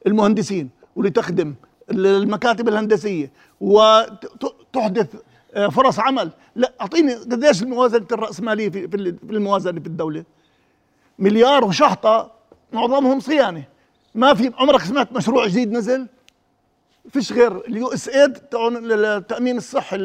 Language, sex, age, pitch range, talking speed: Arabic, male, 50-69, 210-260 Hz, 100 wpm